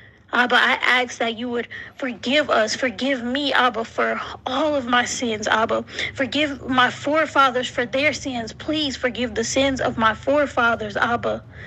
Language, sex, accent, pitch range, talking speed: English, female, American, 245-300 Hz, 160 wpm